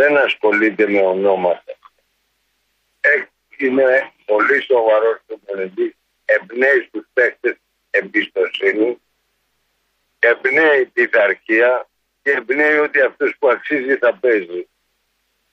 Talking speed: 95 wpm